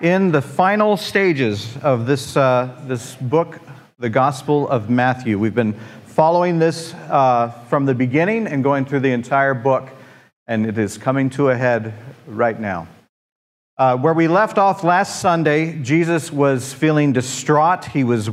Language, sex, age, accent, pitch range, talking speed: English, male, 50-69, American, 125-155 Hz, 160 wpm